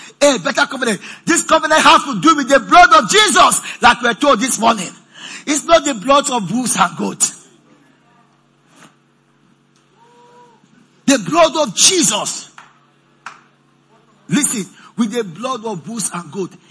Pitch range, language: 175-265 Hz, English